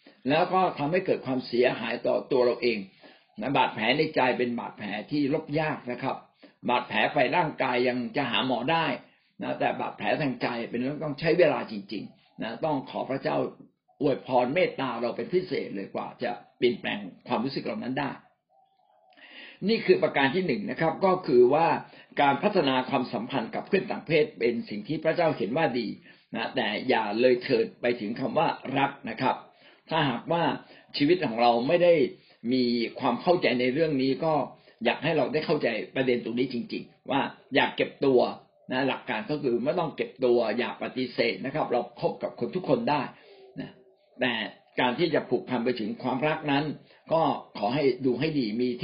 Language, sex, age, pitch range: Thai, male, 60-79, 125-175 Hz